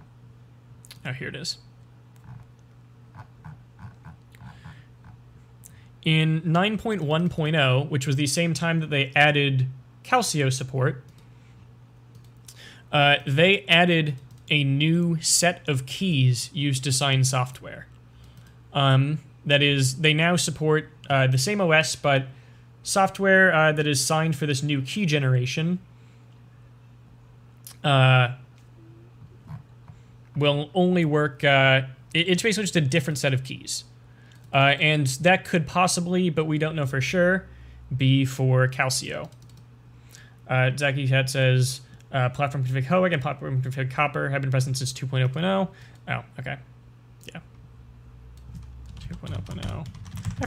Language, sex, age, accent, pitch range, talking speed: English, male, 20-39, American, 120-150 Hz, 115 wpm